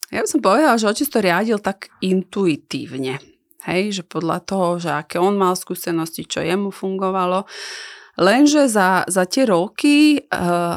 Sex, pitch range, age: female, 170-215 Hz, 30-49